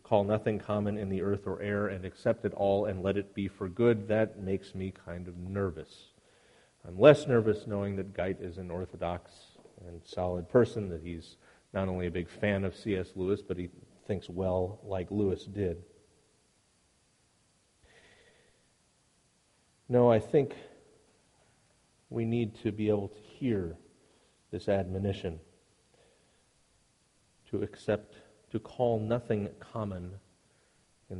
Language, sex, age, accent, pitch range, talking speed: English, male, 40-59, American, 90-105 Hz, 140 wpm